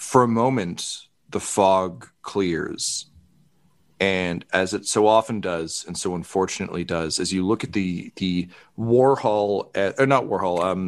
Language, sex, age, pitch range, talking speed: English, male, 40-59, 90-120 Hz, 150 wpm